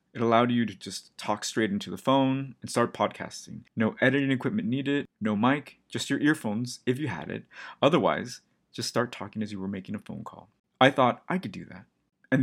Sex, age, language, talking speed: male, 30-49, English, 210 wpm